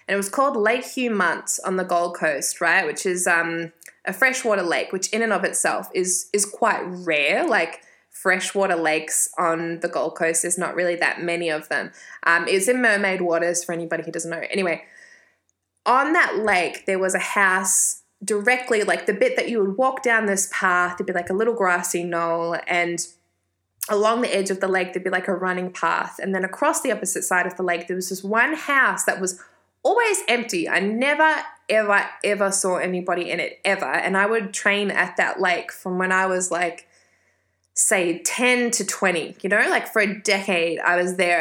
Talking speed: 205 wpm